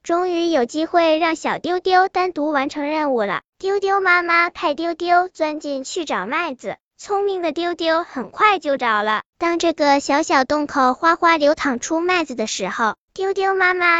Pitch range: 270-355 Hz